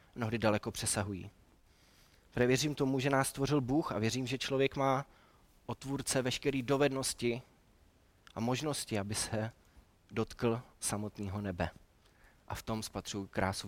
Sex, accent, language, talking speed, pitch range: male, native, Czech, 125 wpm, 100-125 Hz